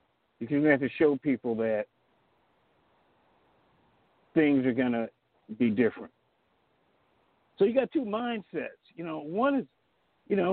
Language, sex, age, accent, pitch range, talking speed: English, male, 50-69, American, 130-170 Hz, 140 wpm